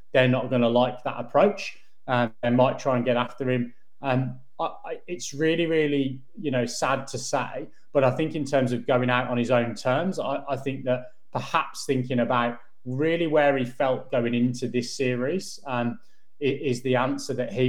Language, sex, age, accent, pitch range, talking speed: English, male, 20-39, British, 120-140 Hz, 205 wpm